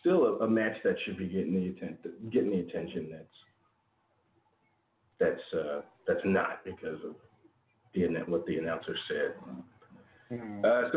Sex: male